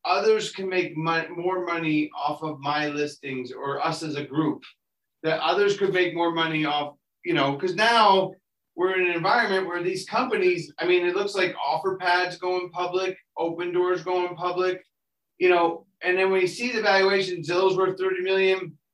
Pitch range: 160-195 Hz